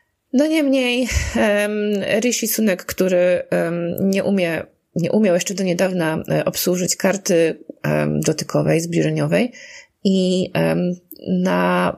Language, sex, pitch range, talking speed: Polish, female, 170-245 Hz, 90 wpm